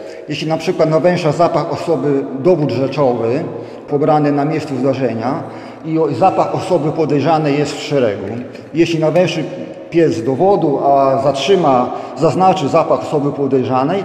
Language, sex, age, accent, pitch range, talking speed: Polish, male, 40-59, native, 135-170 Hz, 130 wpm